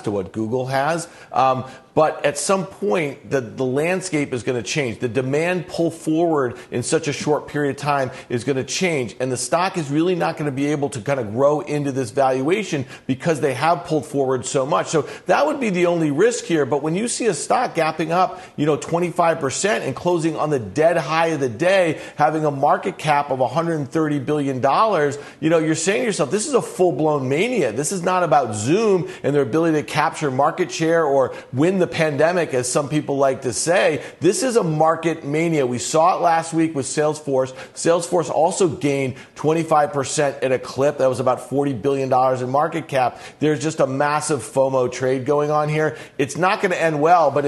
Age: 50-69